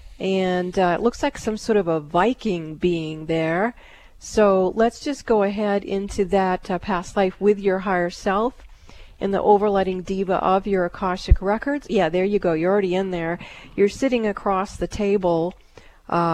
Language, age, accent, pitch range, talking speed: English, 40-59, American, 180-210 Hz, 175 wpm